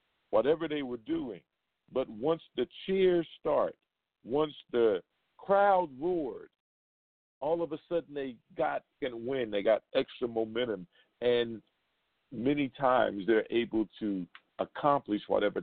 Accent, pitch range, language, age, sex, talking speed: American, 115-165 Hz, English, 50-69, male, 125 wpm